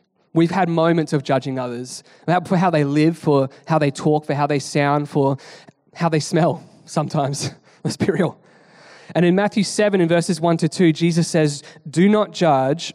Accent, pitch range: Australian, 145-160 Hz